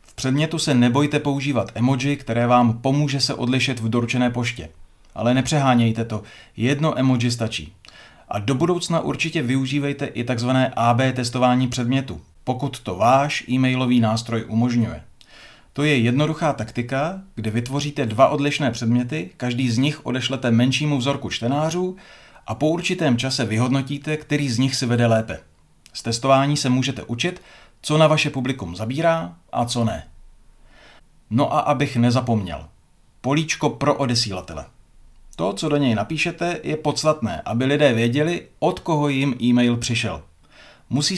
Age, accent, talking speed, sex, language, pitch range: 40-59, native, 145 wpm, male, Czech, 115-145 Hz